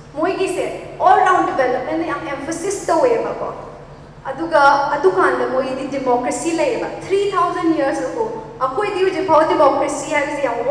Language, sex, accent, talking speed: English, female, Indian, 150 wpm